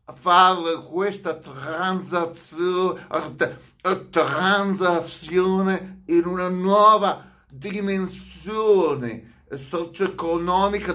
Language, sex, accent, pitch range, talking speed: Italian, male, native, 125-190 Hz, 55 wpm